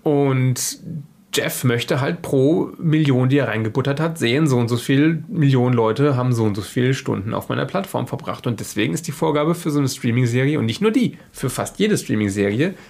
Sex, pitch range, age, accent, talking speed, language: male, 135-185 Hz, 30-49, German, 205 wpm, German